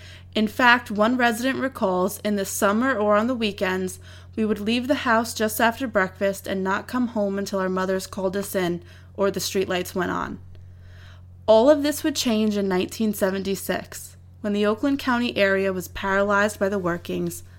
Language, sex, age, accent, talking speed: English, female, 20-39, American, 175 wpm